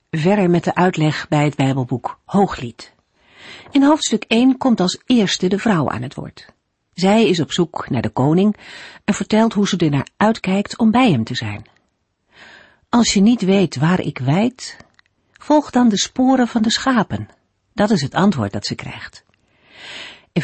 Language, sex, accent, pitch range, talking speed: Dutch, female, Dutch, 145-215 Hz, 175 wpm